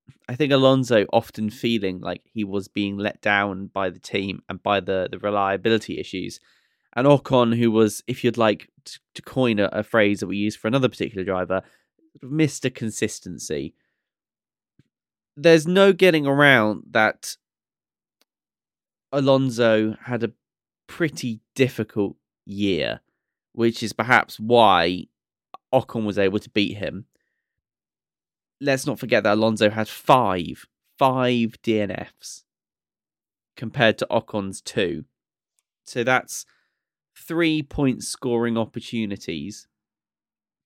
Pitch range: 100-130 Hz